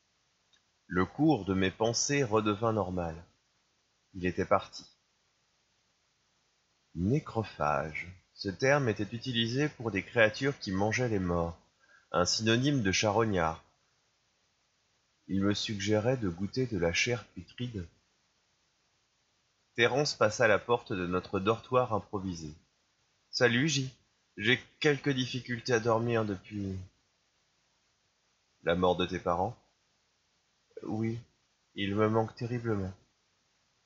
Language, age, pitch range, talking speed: French, 30-49, 90-115 Hz, 115 wpm